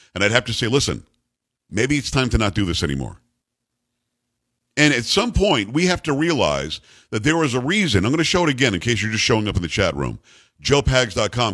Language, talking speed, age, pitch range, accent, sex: English, 230 wpm, 50-69, 110-140 Hz, American, male